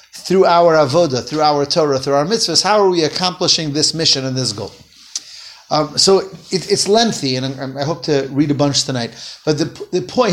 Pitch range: 140-185 Hz